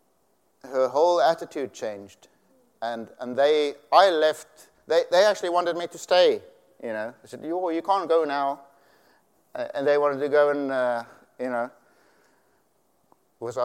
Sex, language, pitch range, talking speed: male, English, 115-155 Hz, 155 wpm